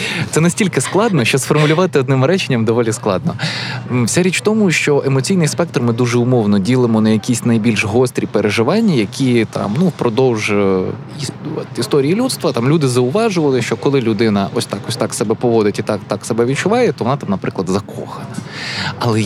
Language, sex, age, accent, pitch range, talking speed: Ukrainian, male, 20-39, native, 110-145 Hz, 170 wpm